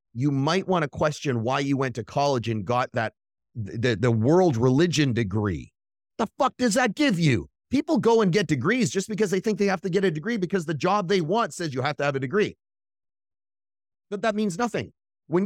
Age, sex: 30-49, male